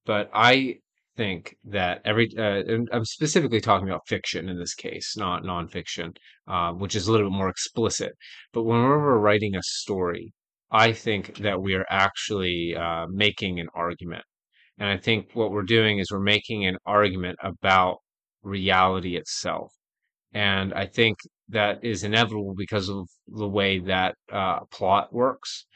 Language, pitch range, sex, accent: English, 90-105 Hz, male, American